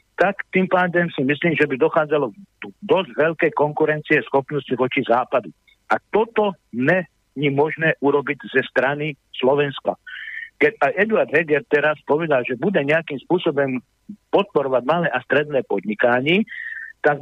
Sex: male